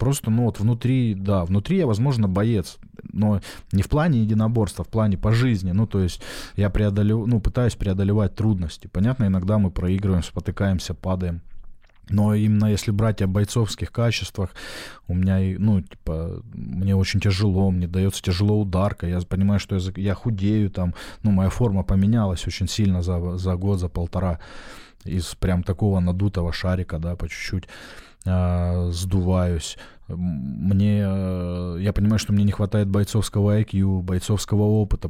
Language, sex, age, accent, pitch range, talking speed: Russian, male, 20-39, native, 90-105 Hz, 155 wpm